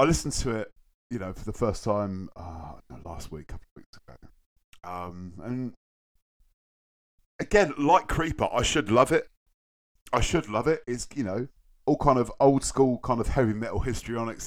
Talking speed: 185 wpm